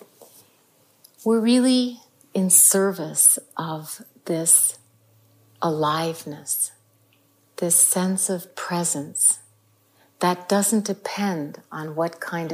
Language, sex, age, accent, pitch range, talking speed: English, female, 50-69, American, 150-185 Hz, 80 wpm